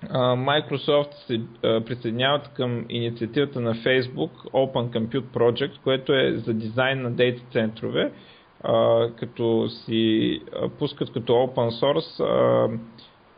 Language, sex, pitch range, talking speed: Bulgarian, male, 115-145 Hz, 115 wpm